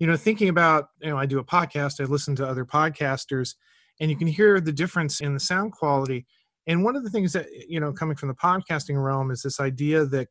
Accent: American